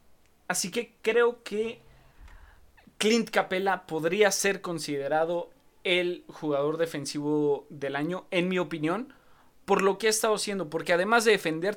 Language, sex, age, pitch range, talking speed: Spanish, male, 30-49, 145-190 Hz, 140 wpm